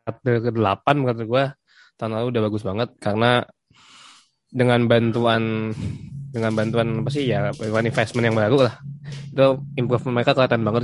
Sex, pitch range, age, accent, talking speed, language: male, 115-140 Hz, 20-39, native, 140 wpm, Indonesian